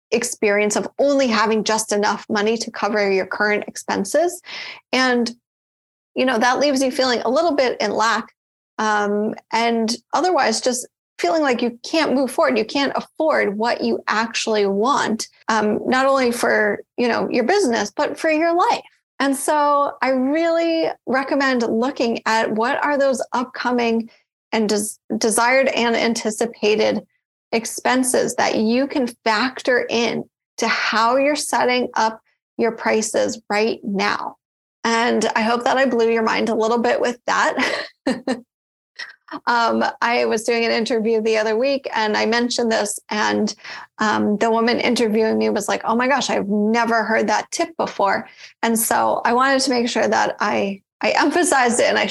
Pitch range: 220-265 Hz